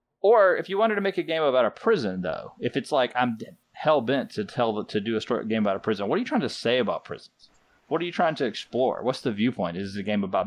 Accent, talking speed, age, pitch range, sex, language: American, 285 wpm, 30-49, 105-135 Hz, male, English